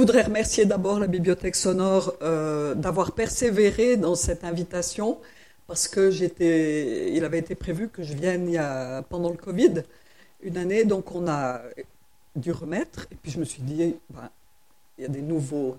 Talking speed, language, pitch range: 175 wpm, French, 165-205 Hz